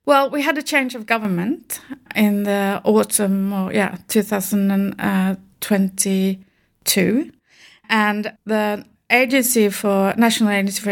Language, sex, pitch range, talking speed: English, female, 195-220 Hz, 110 wpm